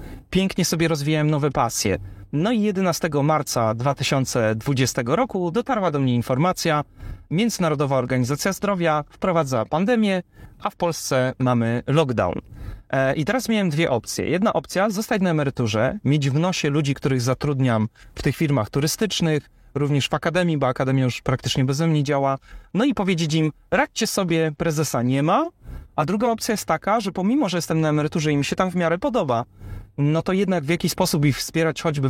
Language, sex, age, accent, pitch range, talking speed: Polish, male, 30-49, native, 130-175 Hz, 170 wpm